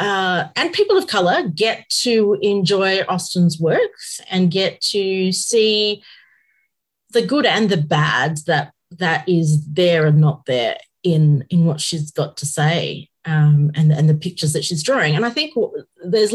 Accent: Australian